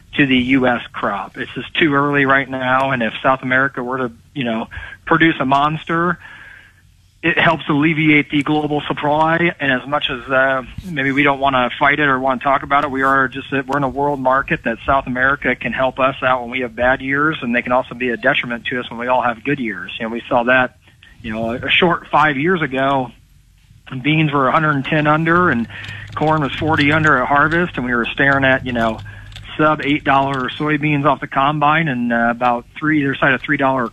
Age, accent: 40-59, American